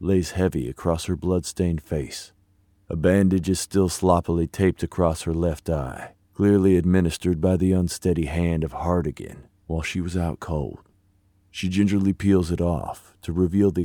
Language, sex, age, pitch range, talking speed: English, male, 40-59, 80-95 Hz, 160 wpm